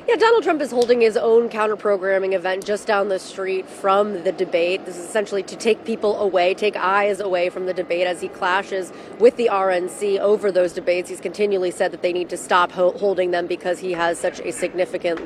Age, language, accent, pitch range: 30-49, English, American, 185-245 Hz